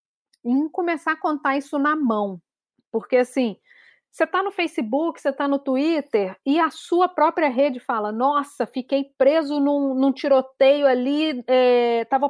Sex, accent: female, Brazilian